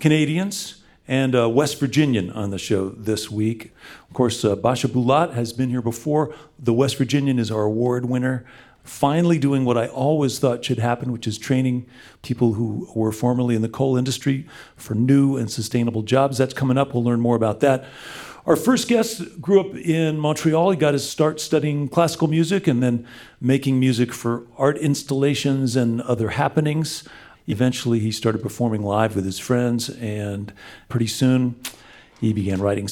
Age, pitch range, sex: 40-59, 115-145 Hz, male